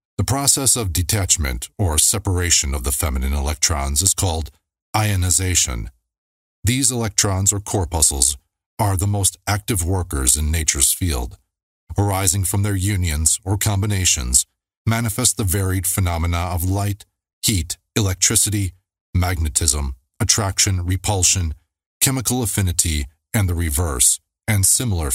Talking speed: 115 wpm